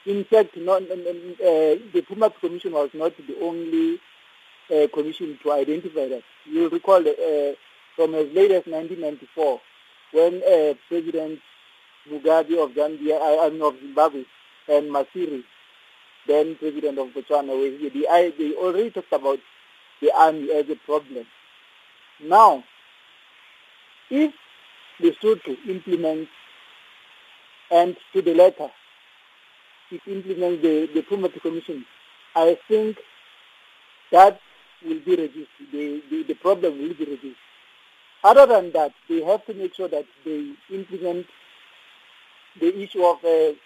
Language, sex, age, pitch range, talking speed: English, male, 50-69, 155-205 Hz, 135 wpm